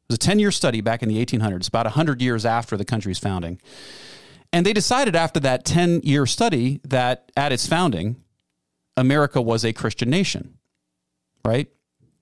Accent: American